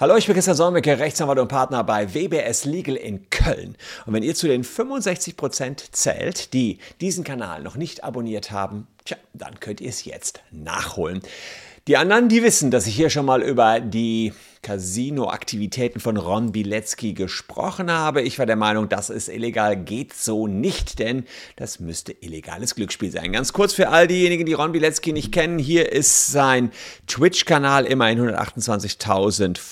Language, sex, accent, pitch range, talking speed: German, male, German, 105-150 Hz, 170 wpm